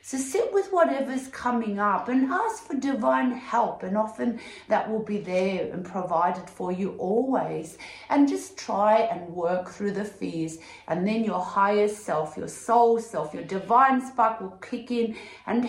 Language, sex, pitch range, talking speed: English, female, 190-240 Hz, 170 wpm